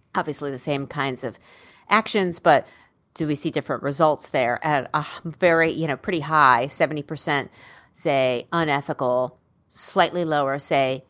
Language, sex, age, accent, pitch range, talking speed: English, female, 40-59, American, 130-160 Hz, 140 wpm